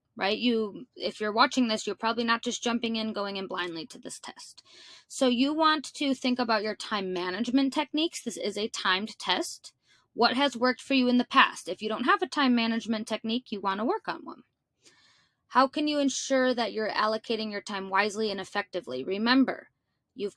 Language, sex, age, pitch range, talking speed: English, female, 20-39, 205-265 Hz, 205 wpm